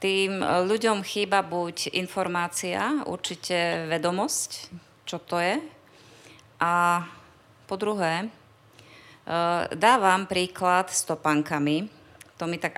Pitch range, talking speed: 145-175 Hz, 95 wpm